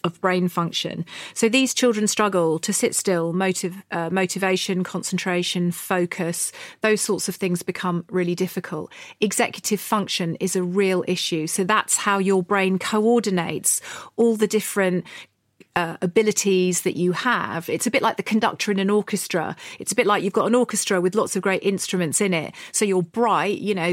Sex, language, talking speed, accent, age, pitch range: female, English, 180 wpm, British, 40-59, 180-210 Hz